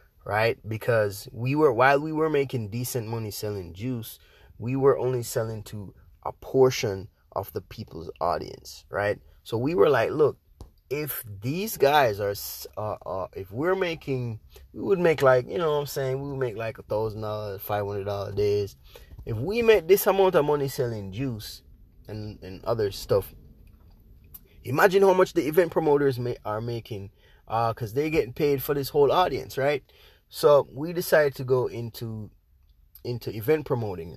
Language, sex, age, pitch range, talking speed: English, male, 20-39, 105-145 Hz, 175 wpm